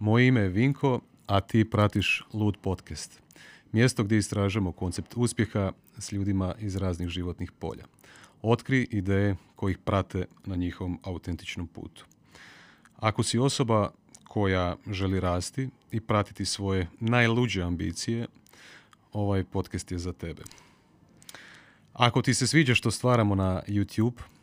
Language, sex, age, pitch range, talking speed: Croatian, male, 40-59, 95-115 Hz, 130 wpm